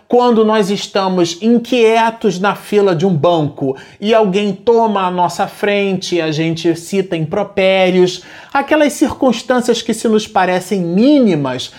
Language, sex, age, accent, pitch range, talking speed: Portuguese, male, 30-49, Brazilian, 170-235 Hz, 135 wpm